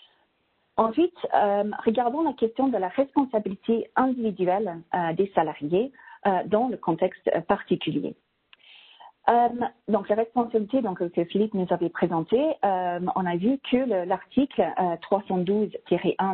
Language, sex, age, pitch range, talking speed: English, female, 40-59, 175-235 Hz, 130 wpm